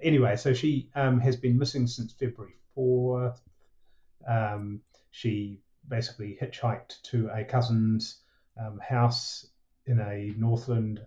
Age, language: 30-49, English